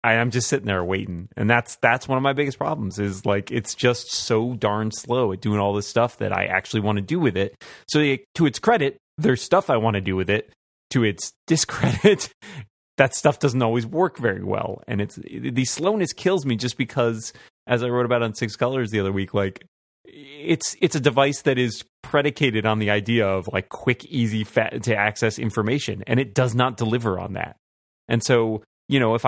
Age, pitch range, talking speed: 30-49, 100-130 Hz, 215 wpm